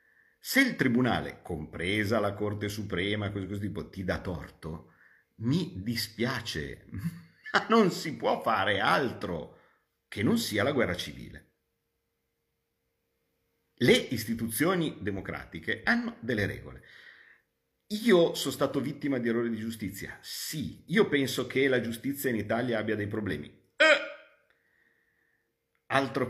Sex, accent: male, native